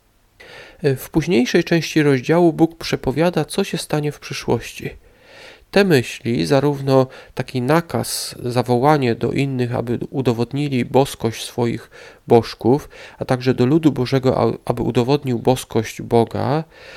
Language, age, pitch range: Polish, 40-59, 120-155 Hz